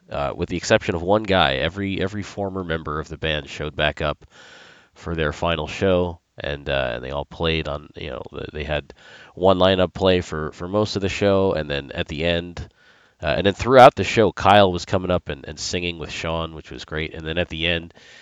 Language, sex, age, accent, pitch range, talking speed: English, male, 30-49, American, 80-95 Hz, 225 wpm